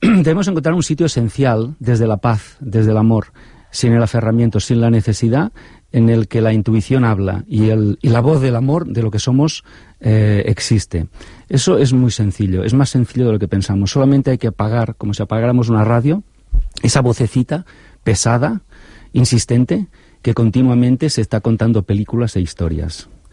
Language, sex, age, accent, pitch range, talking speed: Spanish, male, 40-59, Spanish, 95-125 Hz, 175 wpm